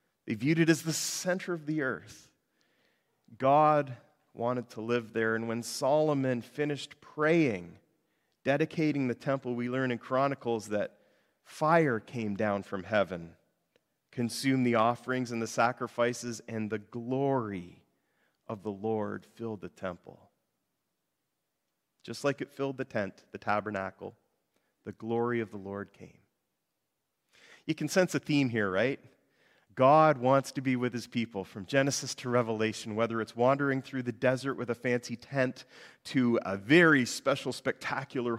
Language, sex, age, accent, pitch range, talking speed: English, male, 40-59, American, 115-140 Hz, 145 wpm